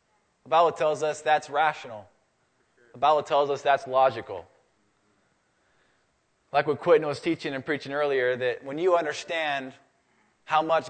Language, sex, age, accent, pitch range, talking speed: English, male, 20-39, American, 130-155 Hz, 145 wpm